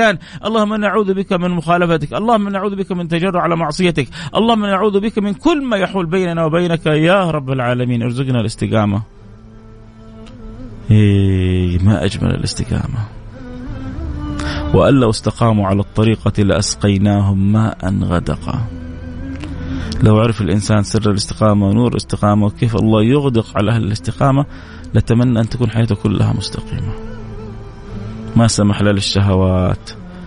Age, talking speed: 30-49, 120 wpm